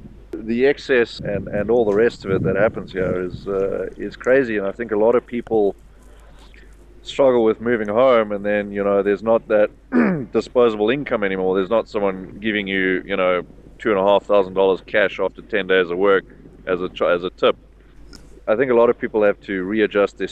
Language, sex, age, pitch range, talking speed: English, male, 30-49, 95-120 Hz, 215 wpm